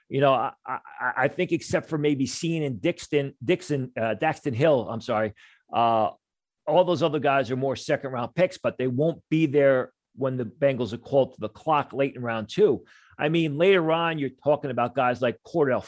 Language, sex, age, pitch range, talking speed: English, male, 40-59, 125-150 Hz, 210 wpm